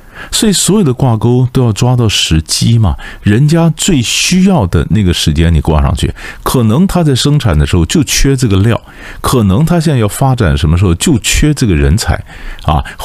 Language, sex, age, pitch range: Chinese, male, 50-69, 80-125 Hz